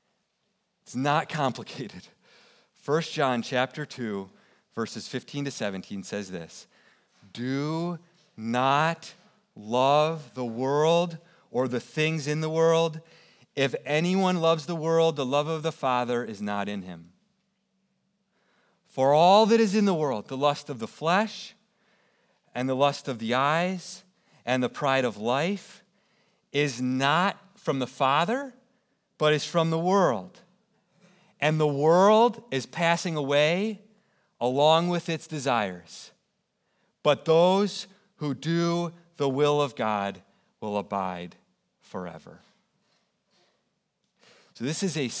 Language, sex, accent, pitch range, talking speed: English, male, American, 130-180 Hz, 125 wpm